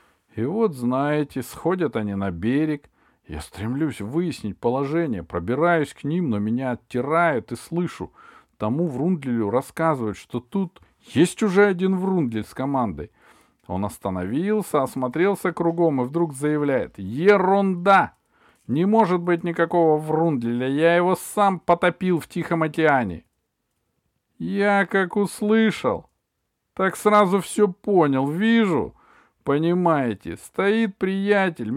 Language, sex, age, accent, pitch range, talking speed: Russian, male, 40-59, native, 145-195 Hz, 115 wpm